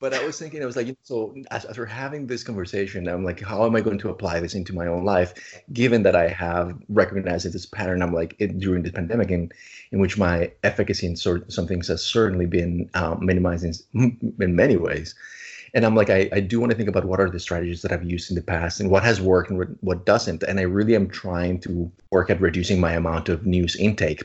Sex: male